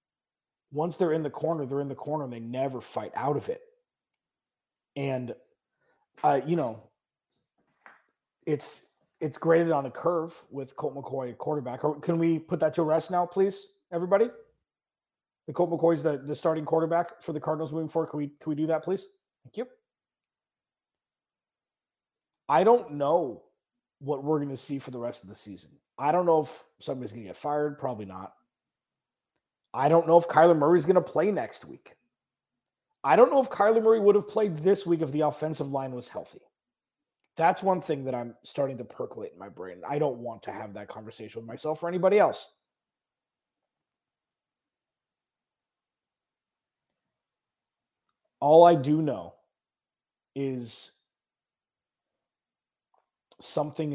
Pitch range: 140-175 Hz